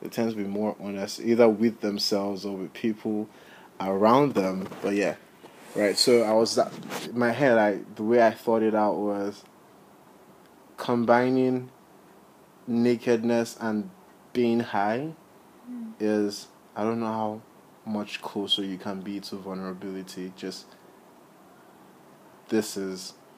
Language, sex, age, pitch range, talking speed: English, male, 20-39, 105-120 Hz, 130 wpm